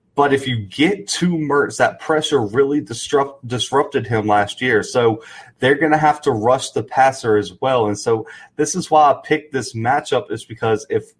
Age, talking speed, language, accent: 30-49, 200 wpm, English, American